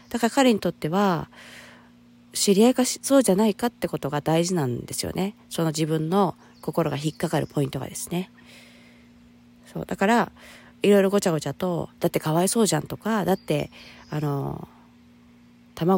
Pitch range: 135-200 Hz